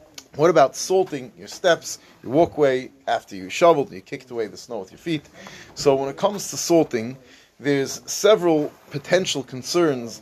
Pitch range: 120-160 Hz